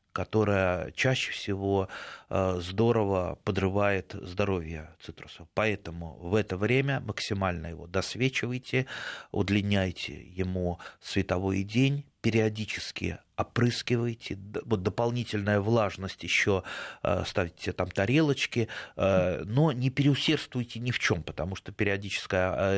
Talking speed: 95 wpm